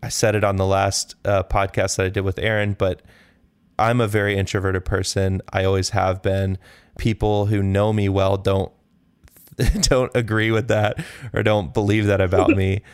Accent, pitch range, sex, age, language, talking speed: American, 95-110 Hz, male, 20-39, English, 180 wpm